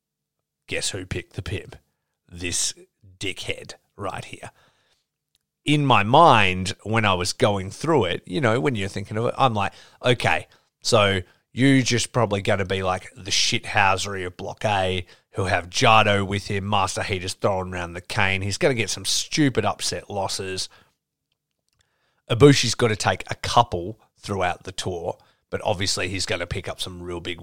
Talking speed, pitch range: 175 wpm, 95-120 Hz